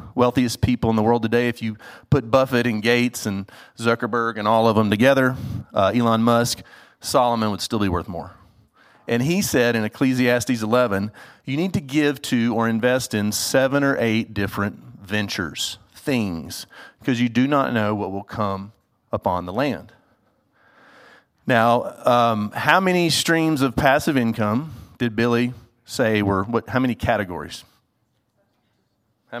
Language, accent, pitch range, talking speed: English, American, 105-125 Hz, 155 wpm